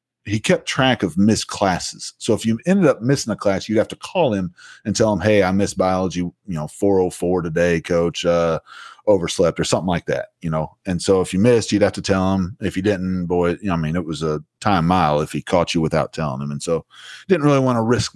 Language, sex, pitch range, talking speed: English, male, 95-130 Hz, 260 wpm